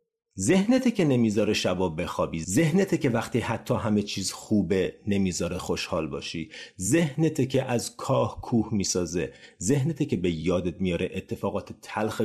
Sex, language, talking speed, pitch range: male, Persian, 135 wpm, 105-155 Hz